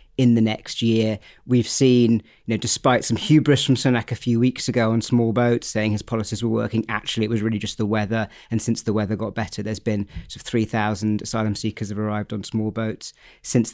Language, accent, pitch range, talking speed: English, British, 110-120 Hz, 215 wpm